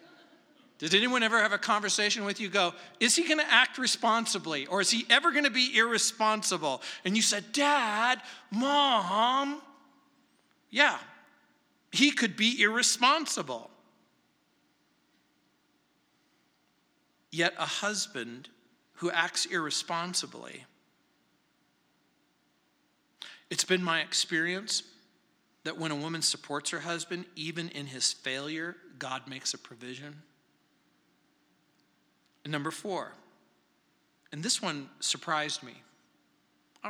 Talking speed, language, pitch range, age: 110 wpm, English, 150-230 Hz, 50-69